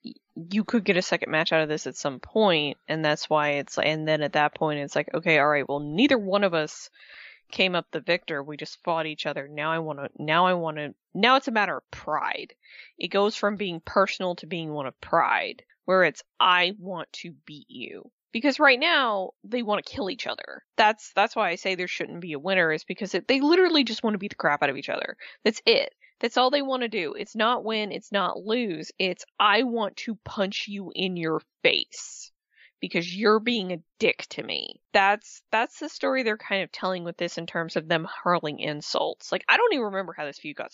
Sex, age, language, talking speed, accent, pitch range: female, 20-39, English, 235 wpm, American, 165-225 Hz